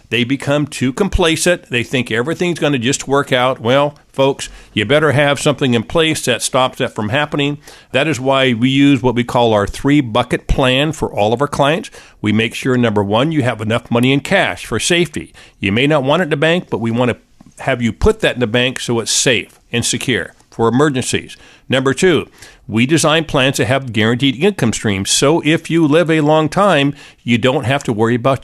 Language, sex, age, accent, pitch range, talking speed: English, male, 50-69, American, 115-145 Hz, 215 wpm